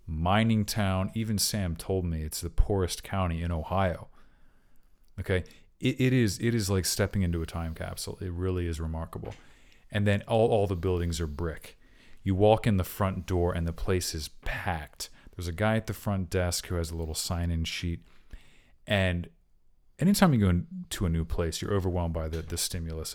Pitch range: 85-105 Hz